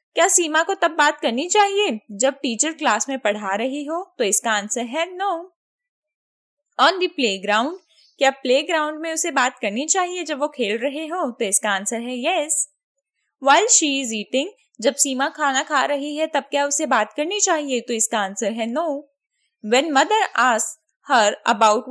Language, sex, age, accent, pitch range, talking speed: English, female, 10-29, Indian, 220-315 Hz, 180 wpm